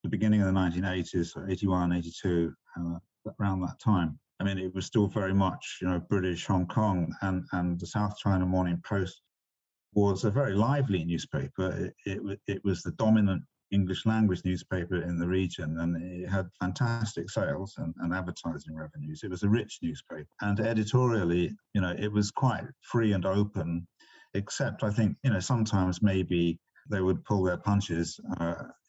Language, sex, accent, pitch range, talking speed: English, male, British, 85-105 Hz, 170 wpm